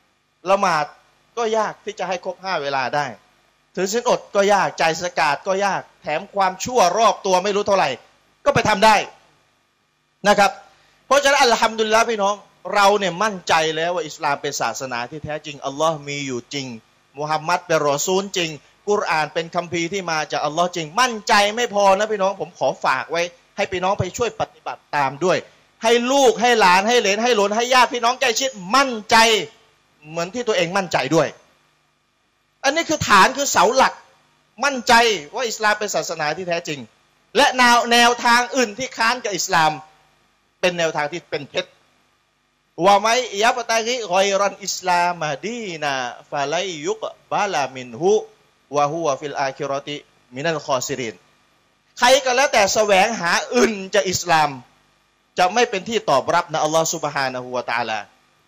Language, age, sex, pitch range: Thai, 30-49, male, 155-225 Hz